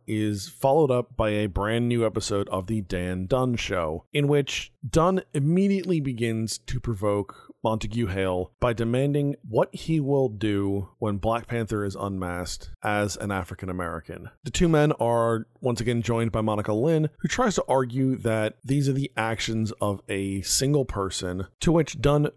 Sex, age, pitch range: male, 30-49, 105-135 Hz